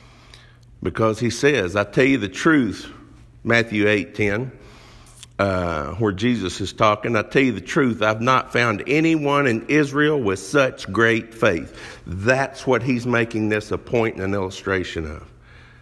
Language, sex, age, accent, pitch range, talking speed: English, male, 50-69, American, 95-130 Hz, 150 wpm